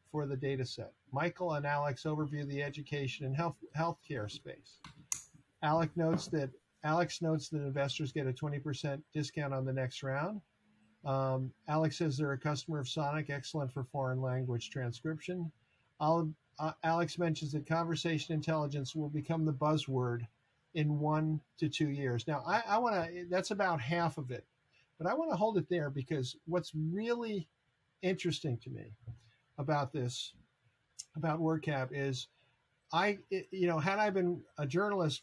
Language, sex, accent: English, male, American